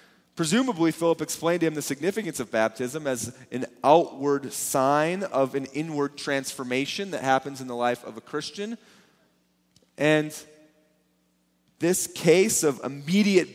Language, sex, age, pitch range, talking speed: English, male, 30-49, 115-195 Hz, 135 wpm